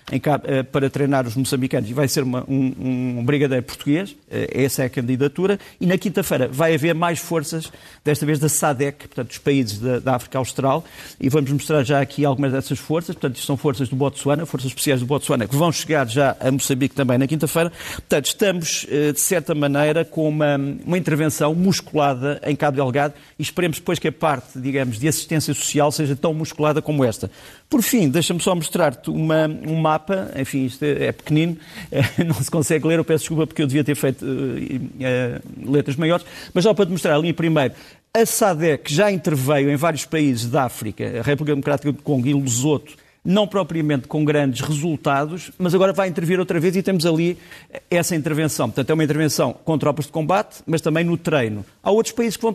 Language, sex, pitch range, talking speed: Portuguese, male, 140-165 Hz, 195 wpm